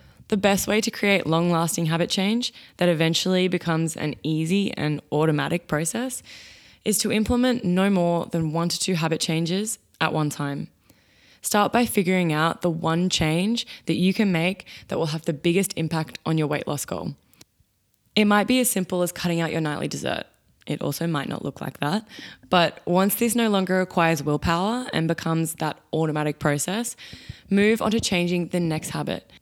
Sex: female